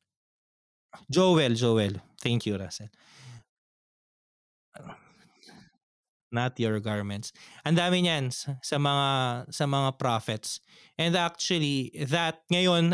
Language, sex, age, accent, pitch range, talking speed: Filipino, male, 20-39, native, 120-155 Hz, 95 wpm